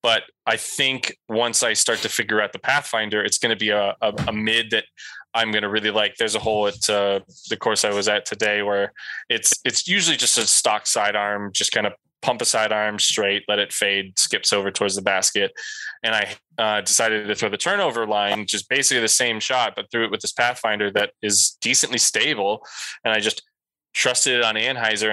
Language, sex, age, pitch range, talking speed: English, male, 20-39, 100-110 Hz, 215 wpm